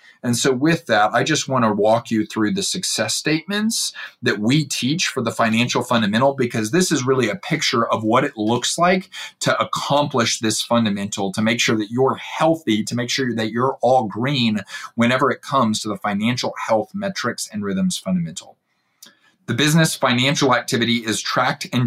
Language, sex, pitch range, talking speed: English, male, 110-150 Hz, 185 wpm